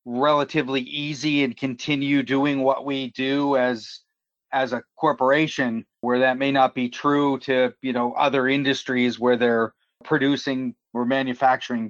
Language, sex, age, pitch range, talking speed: English, male, 40-59, 130-150 Hz, 140 wpm